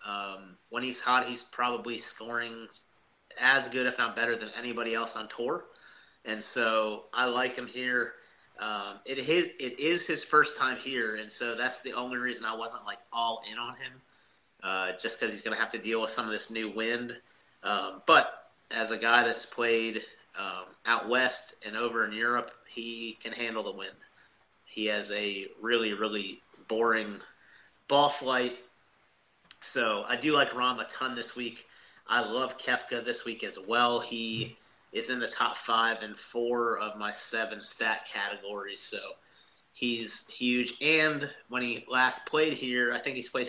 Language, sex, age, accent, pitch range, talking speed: English, male, 30-49, American, 110-125 Hz, 180 wpm